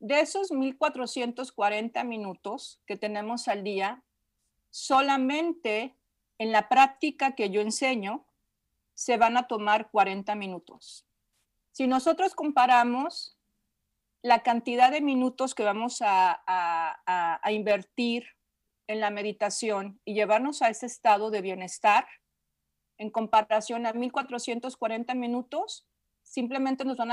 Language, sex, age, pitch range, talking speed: Spanish, female, 40-59, 210-255 Hz, 115 wpm